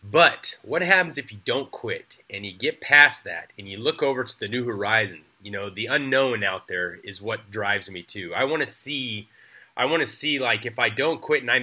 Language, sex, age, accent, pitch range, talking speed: English, male, 30-49, American, 100-130 Hz, 235 wpm